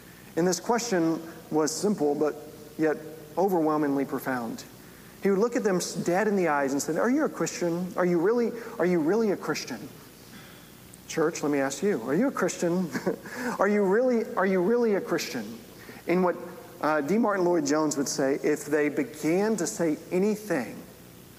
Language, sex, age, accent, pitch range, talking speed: English, male, 40-59, American, 150-195 Hz, 175 wpm